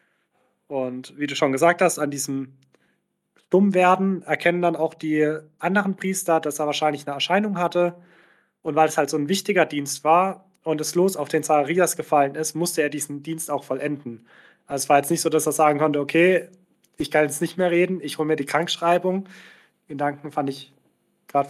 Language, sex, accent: German, male, German